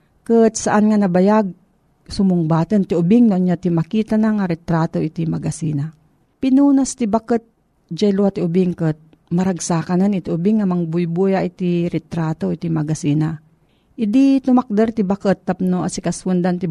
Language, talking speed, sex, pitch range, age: Filipino, 140 wpm, female, 170-225 Hz, 40-59